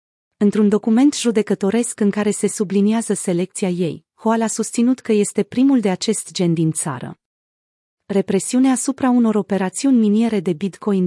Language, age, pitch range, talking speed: Romanian, 30-49, 180-220 Hz, 145 wpm